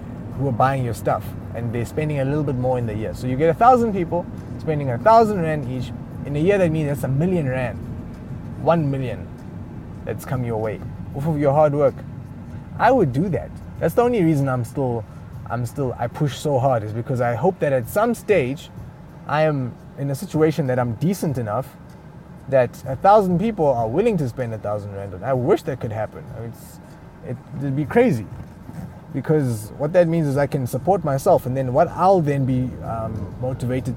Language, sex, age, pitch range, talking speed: English, male, 20-39, 120-155 Hz, 210 wpm